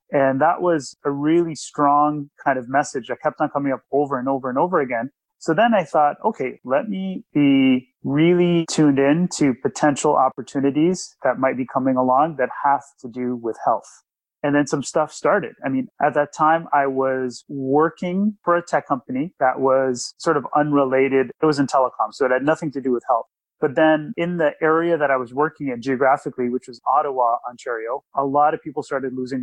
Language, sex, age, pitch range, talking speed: English, male, 30-49, 130-155 Hz, 205 wpm